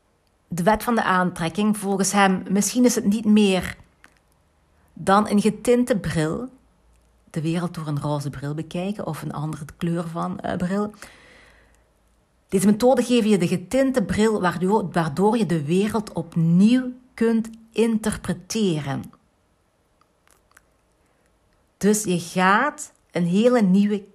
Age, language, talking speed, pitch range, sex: 40-59, Dutch, 125 wpm, 160-210 Hz, female